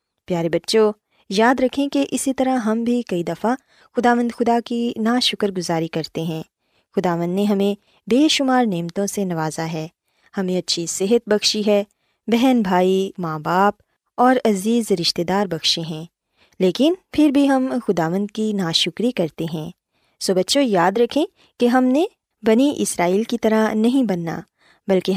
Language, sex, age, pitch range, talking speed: Urdu, female, 20-39, 180-240 Hz, 160 wpm